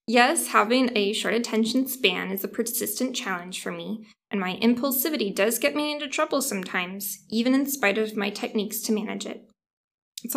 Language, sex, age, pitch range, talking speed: English, female, 20-39, 215-255 Hz, 180 wpm